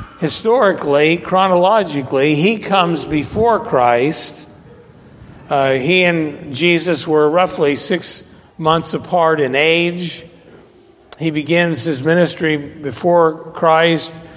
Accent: American